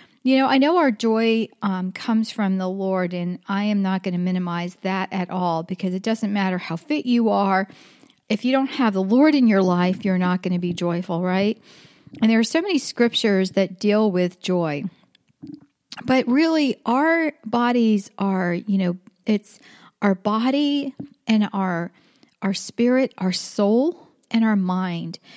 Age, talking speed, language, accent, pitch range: 40-59, 175 wpm, English, American, 190-245 Hz